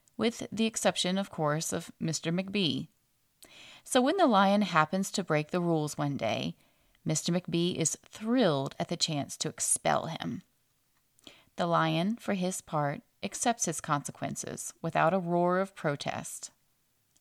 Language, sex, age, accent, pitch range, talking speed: English, female, 30-49, American, 155-195 Hz, 145 wpm